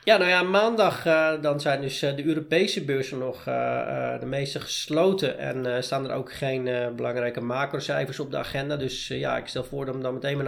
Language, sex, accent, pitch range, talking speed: Dutch, male, Dutch, 125-150 Hz, 230 wpm